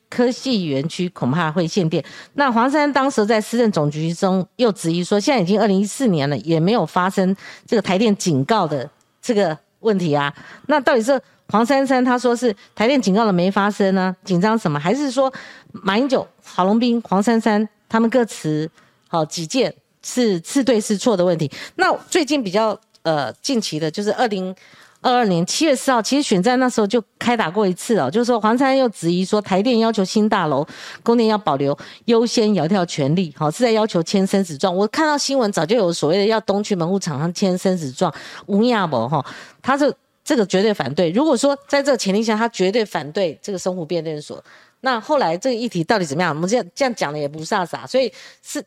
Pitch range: 180-240 Hz